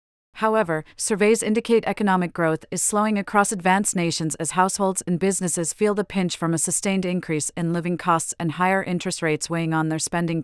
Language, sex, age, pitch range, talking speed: English, female, 40-59, 165-200 Hz, 185 wpm